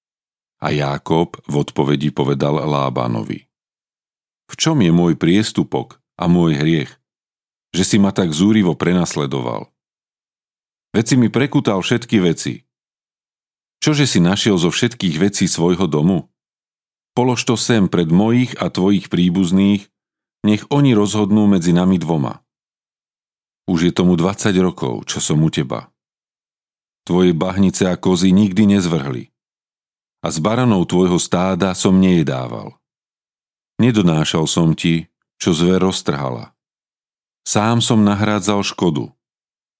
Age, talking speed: 40-59, 120 wpm